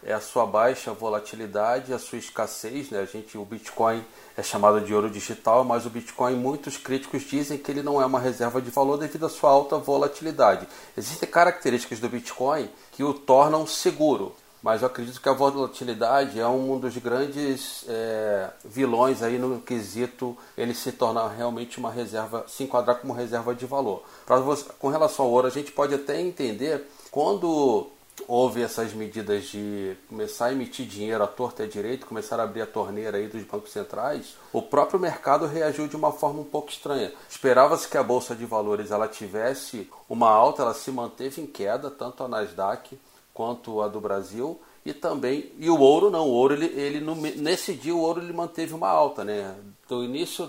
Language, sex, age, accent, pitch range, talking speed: Portuguese, male, 40-59, Brazilian, 115-140 Hz, 190 wpm